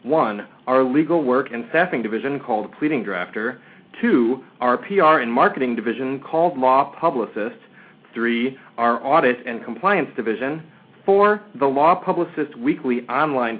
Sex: male